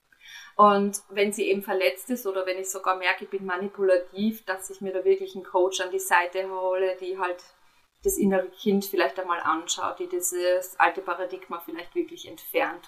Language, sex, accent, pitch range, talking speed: German, female, German, 180-230 Hz, 185 wpm